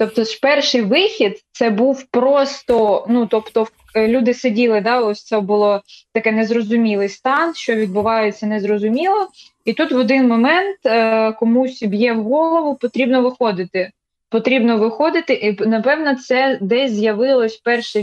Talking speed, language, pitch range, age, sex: 135 wpm, Ukrainian, 220-255 Hz, 20-39, female